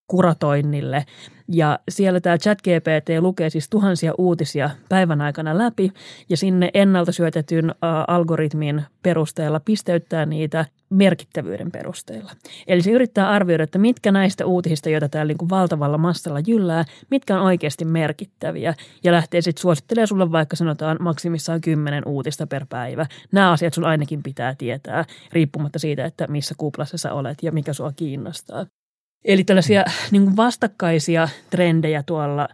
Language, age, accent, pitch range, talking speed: Finnish, 30-49, native, 150-180 Hz, 140 wpm